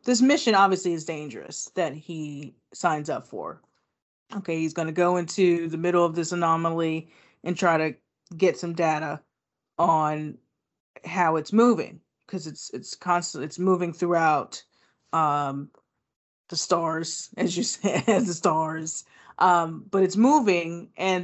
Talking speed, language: 145 wpm, English